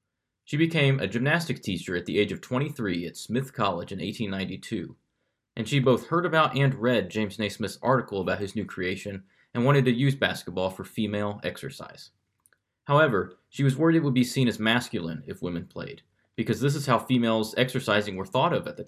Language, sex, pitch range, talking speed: English, male, 105-140 Hz, 195 wpm